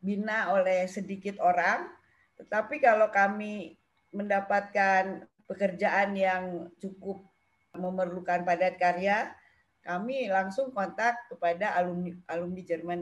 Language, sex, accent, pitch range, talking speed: Indonesian, female, native, 180-215 Hz, 95 wpm